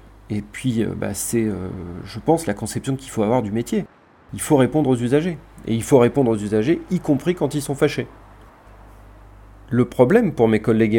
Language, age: French, 30-49